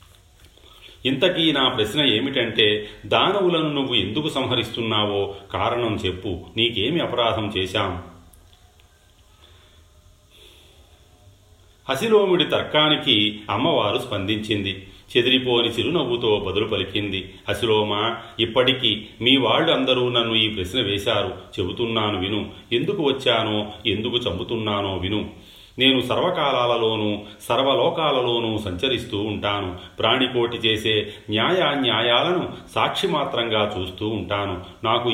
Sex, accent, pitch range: male, native, 100-120 Hz